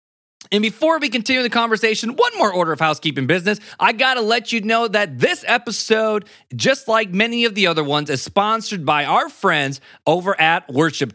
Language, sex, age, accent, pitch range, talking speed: English, male, 30-49, American, 155-220 Hz, 195 wpm